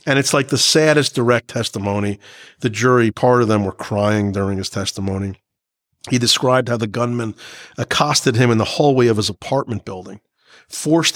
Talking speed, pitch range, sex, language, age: 170 wpm, 110-130 Hz, male, English, 40-59